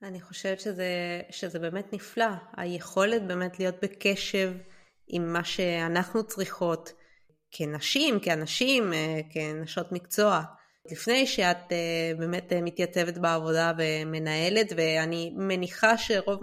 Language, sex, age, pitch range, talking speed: Hebrew, female, 20-39, 170-205 Hz, 100 wpm